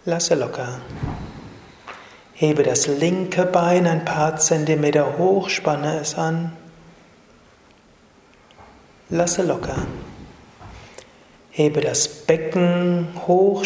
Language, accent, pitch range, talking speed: German, German, 150-185 Hz, 85 wpm